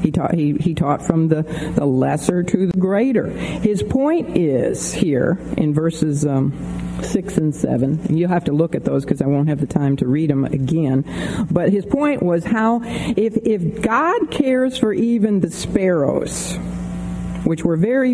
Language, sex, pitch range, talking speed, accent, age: English, female, 155-220 Hz, 170 wpm, American, 50-69